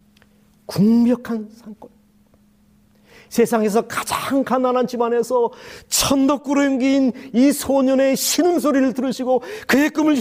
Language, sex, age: Korean, male, 40-59